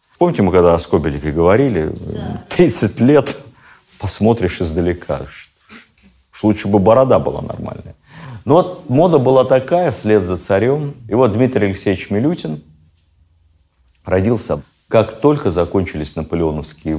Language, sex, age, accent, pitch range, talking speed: Russian, male, 50-69, native, 85-120 Hz, 115 wpm